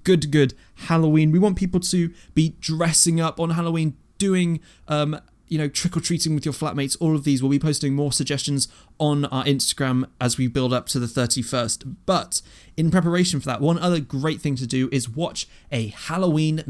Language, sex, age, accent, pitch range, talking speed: English, male, 20-39, British, 125-160 Hz, 200 wpm